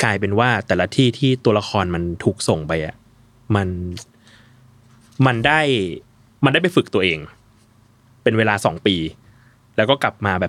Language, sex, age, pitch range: Thai, male, 20-39, 110-125 Hz